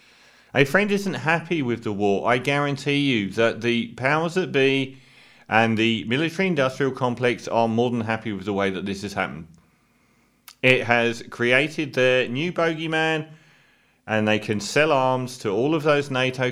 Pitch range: 110-140 Hz